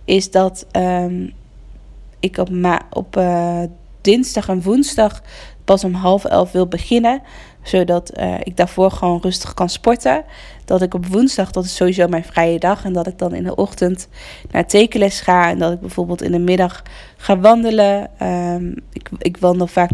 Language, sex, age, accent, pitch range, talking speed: Dutch, female, 20-39, Dutch, 175-195 Hz, 170 wpm